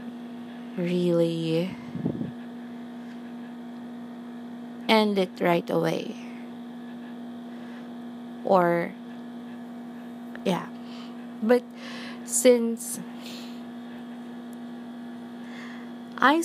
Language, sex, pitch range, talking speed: English, female, 225-240 Hz, 35 wpm